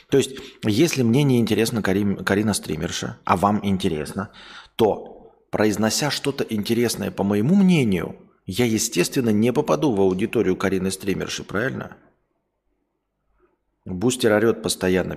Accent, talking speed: native, 115 wpm